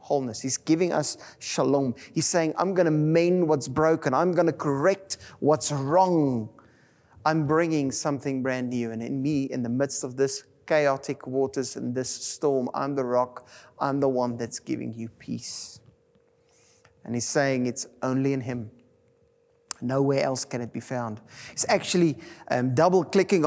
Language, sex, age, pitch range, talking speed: English, male, 30-49, 135-180 Hz, 165 wpm